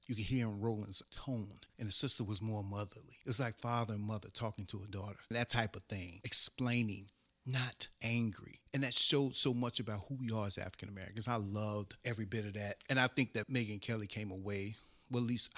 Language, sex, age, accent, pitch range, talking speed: English, male, 40-59, American, 95-115 Hz, 225 wpm